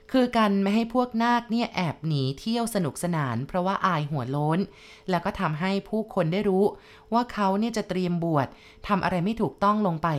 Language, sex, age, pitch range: Thai, female, 20-39, 155-200 Hz